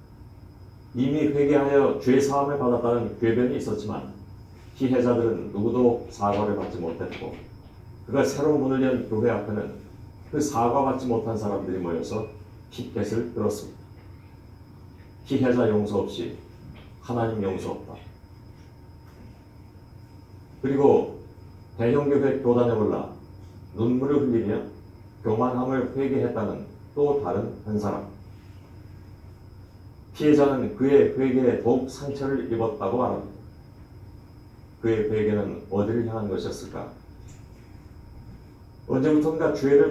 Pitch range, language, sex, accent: 100-130 Hz, Korean, male, native